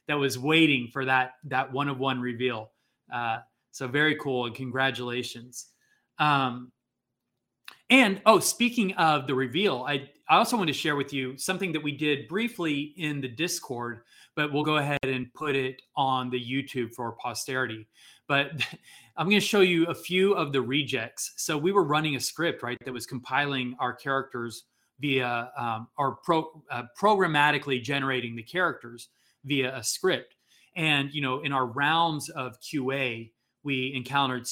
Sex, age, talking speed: male, 30-49, 165 wpm